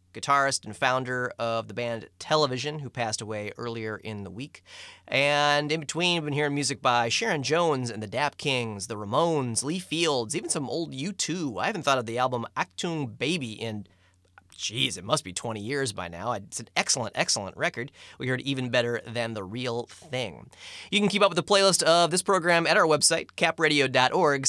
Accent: American